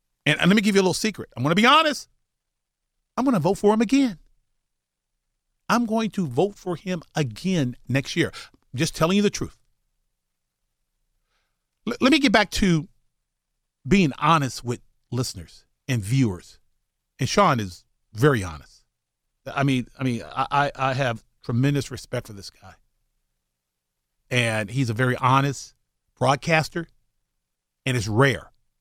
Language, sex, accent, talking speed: English, male, American, 150 wpm